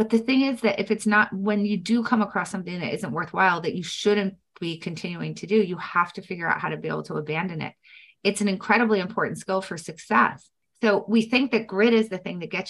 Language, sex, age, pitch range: English, female, 30-49, 190-230 Hz